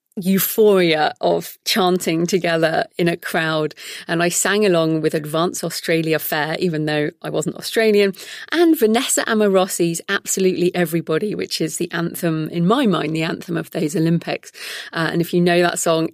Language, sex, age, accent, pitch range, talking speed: English, female, 40-59, British, 165-215 Hz, 165 wpm